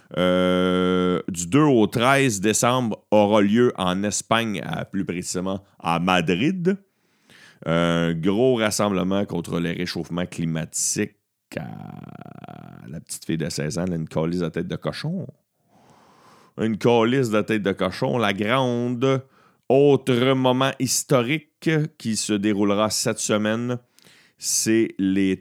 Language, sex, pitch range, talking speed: French, male, 95-130 Hz, 130 wpm